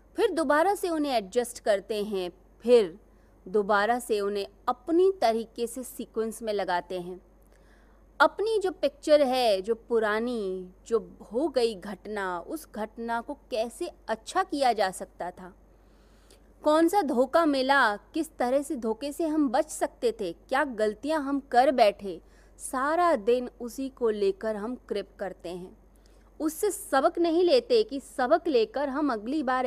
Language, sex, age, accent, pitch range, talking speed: Hindi, female, 20-39, native, 215-300 Hz, 150 wpm